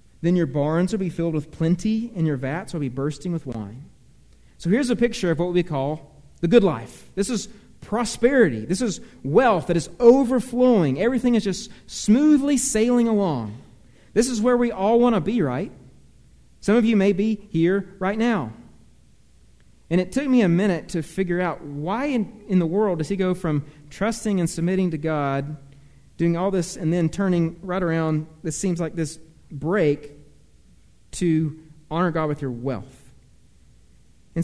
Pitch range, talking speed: 150-205 Hz, 180 wpm